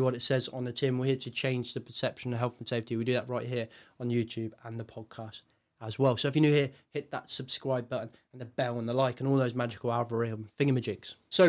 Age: 20-39